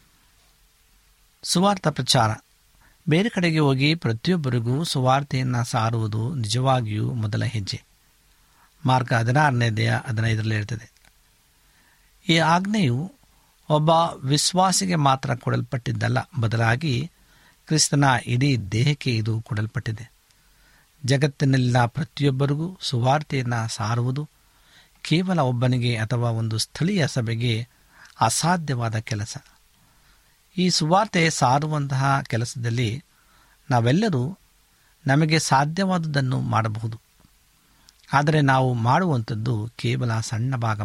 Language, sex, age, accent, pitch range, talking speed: Kannada, male, 60-79, native, 115-150 Hz, 80 wpm